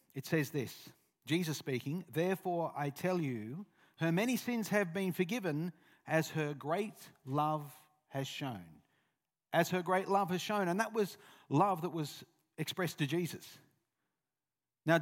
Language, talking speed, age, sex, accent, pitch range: English, 150 wpm, 50-69, male, Australian, 140-185 Hz